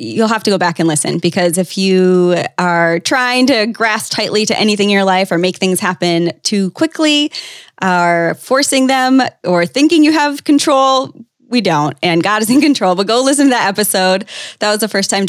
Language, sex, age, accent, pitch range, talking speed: English, female, 20-39, American, 170-210 Hz, 205 wpm